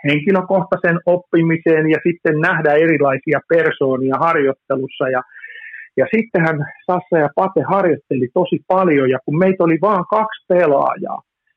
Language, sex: Finnish, male